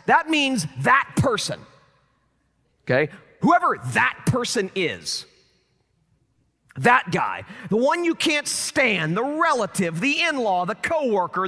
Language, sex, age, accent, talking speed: English, male, 40-59, American, 115 wpm